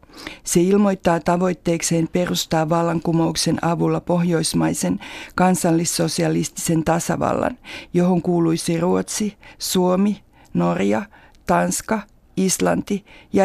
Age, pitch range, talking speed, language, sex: 50-69, 170-195 Hz, 75 wpm, Finnish, female